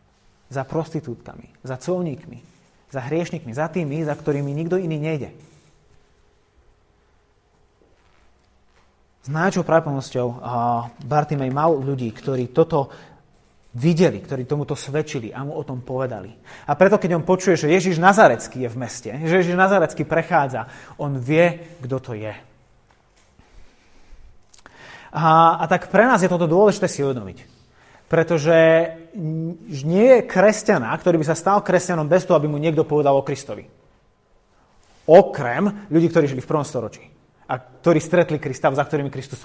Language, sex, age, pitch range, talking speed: Slovak, male, 30-49, 135-175 Hz, 140 wpm